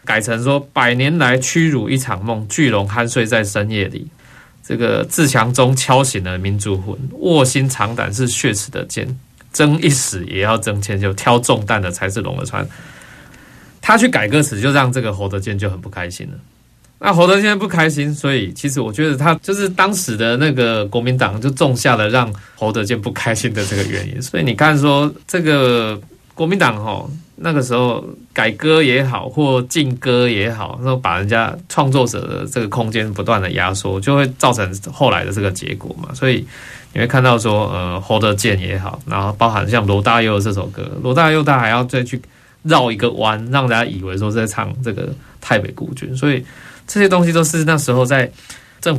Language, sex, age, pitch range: Chinese, male, 20-39, 105-140 Hz